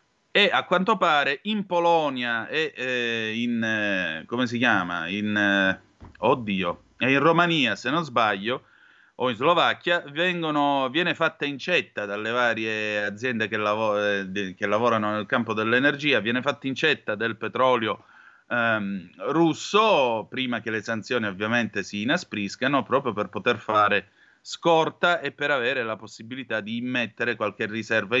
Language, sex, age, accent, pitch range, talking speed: Italian, male, 30-49, native, 110-140 Hz, 145 wpm